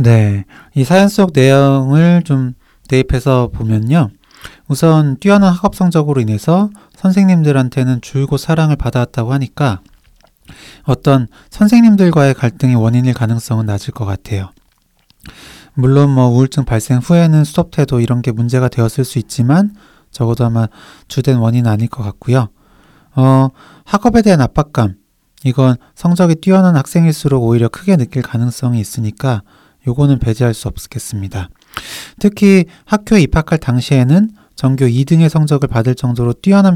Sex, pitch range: male, 120-155 Hz